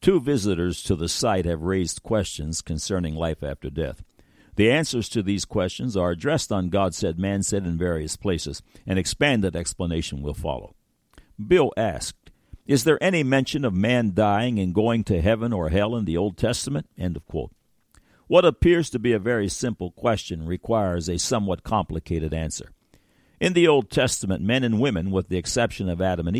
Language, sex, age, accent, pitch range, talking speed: English, male, 60-79, American, 90-120 Hz, 175 wpm